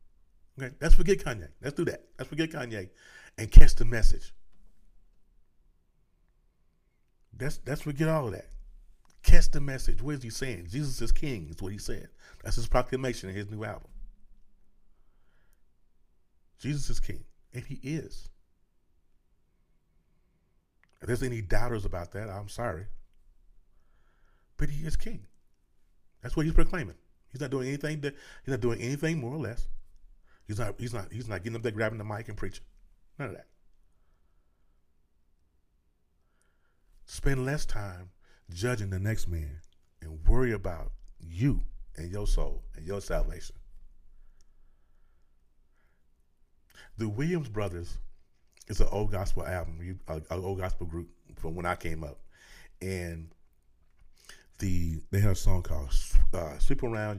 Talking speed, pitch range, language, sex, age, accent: 140 wpm, 80-120 Hz, English, male, 40-59, American